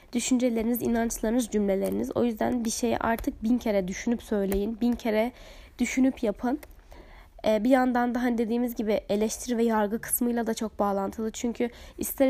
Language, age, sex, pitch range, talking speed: Turkish, 10-29, female, 225-265 Hz, 150 wpm